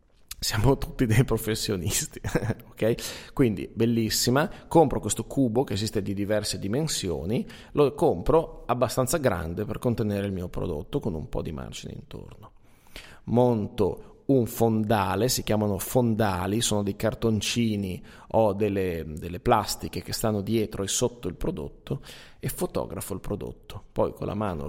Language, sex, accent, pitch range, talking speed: Italian, male, native, 100-125 Hz, 140 wpm